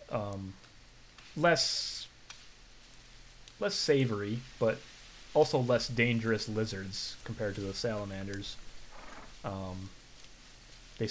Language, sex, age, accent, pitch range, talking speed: English, male, 30-49, American, 100-125 Hz, 80 wpm